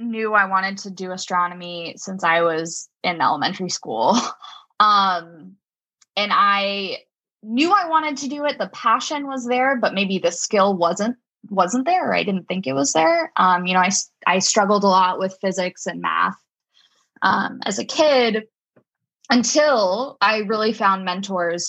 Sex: female